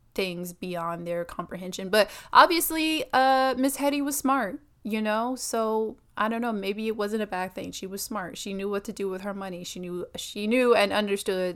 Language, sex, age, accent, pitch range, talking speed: English, female, 20-39, American, 180-220 Hz, 210 wpm